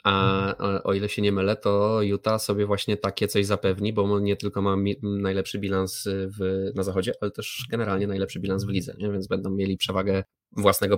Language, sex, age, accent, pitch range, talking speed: Polish, male, 20-39, native, 95-105 Hz, 210 wpm